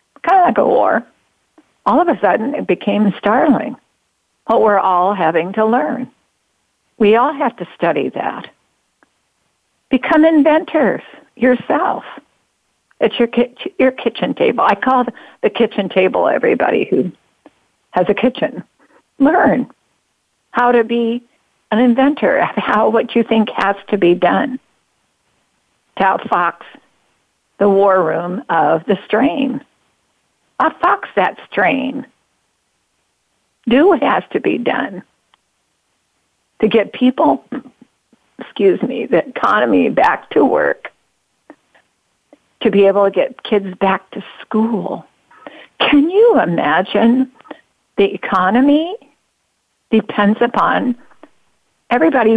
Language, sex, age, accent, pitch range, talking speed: English, female, 50-69, American, 200-270 Hz, 115 wpm